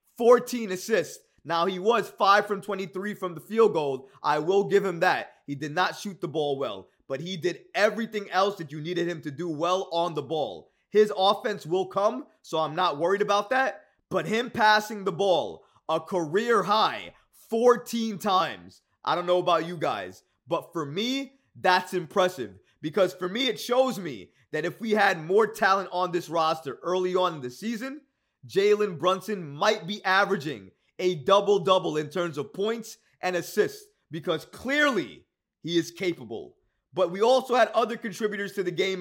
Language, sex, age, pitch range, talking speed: English, male, 20-39, 175-220 Hz, 180 wpm